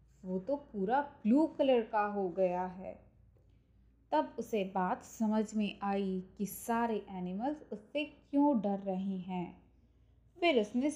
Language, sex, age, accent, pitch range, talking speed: Hindi, female, 20-39, native, 190-275 Hz, 135 wpm